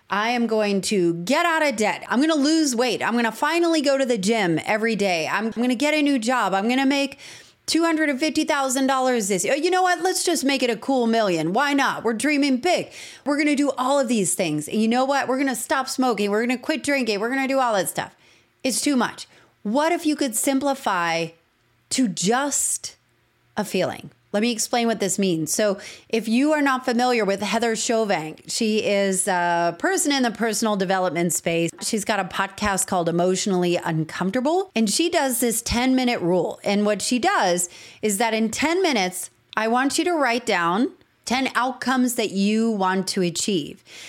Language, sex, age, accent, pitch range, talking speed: English, female, 30-49, American, 195-275 Hz, 210 wpm